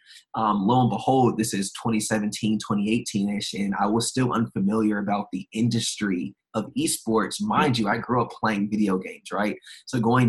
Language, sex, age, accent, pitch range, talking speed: English, male, 20-39, American, 100-115 Hz, 175 wpm